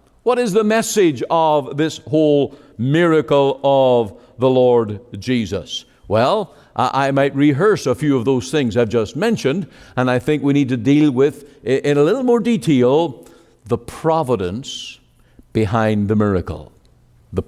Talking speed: 150 wpm